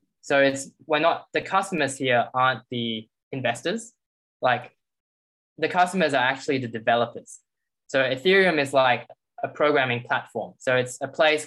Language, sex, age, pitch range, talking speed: English, male, 10-29, 120-140 Hz, 145 wpm